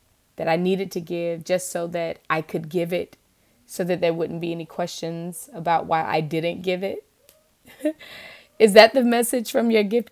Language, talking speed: English, 190 wpm